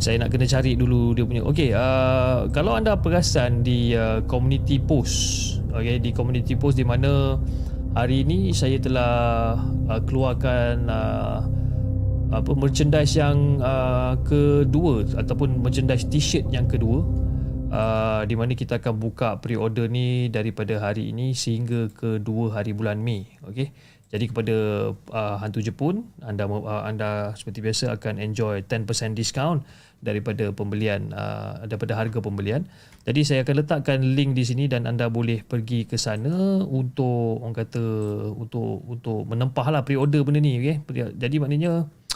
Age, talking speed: 20-39, 145 wpm